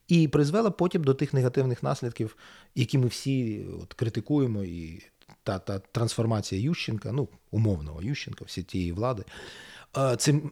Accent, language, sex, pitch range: native, Ukrainian, male, 115-155 Hz